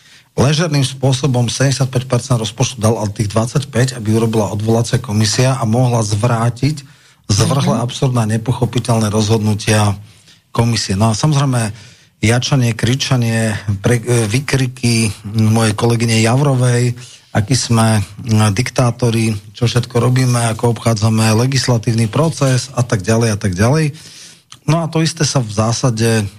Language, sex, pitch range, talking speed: Slovak, male, 105-130 Hz, 120 wpm